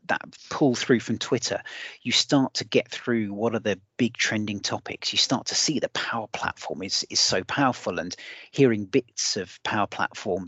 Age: 30-49